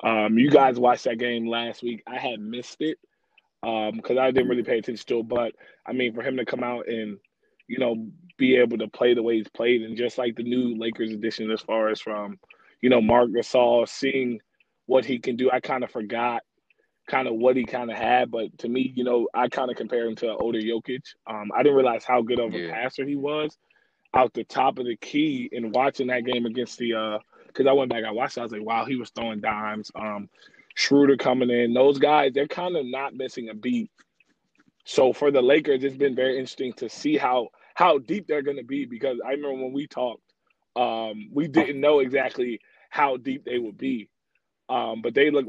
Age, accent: 20-39, American